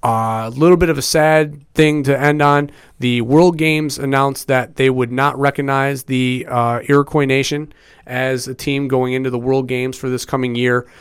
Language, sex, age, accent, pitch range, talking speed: English, male, 30-49, American, 125-140 Hz, 195 wpm